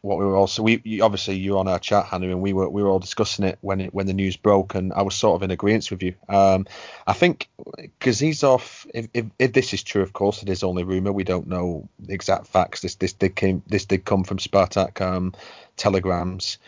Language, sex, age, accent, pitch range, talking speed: English, male, 30-49, British, 95-105 Hz, 260 wpm